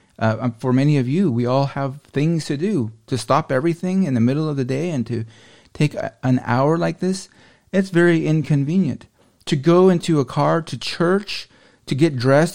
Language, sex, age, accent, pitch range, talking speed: English, male, 40-59, American, 120-160 Hz, 195 wpm